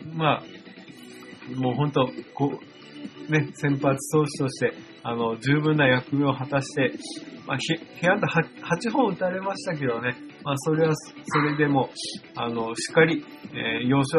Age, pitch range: 20-39, 130-165 Hz